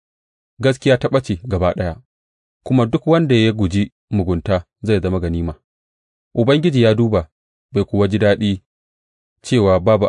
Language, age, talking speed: English, 30-49, 105 wpm